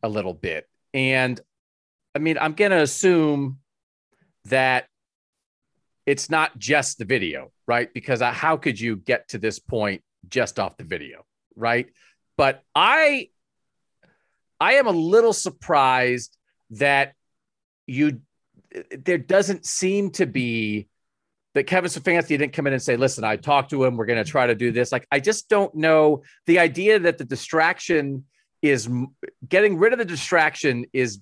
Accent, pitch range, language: American, 125-175 Hz, English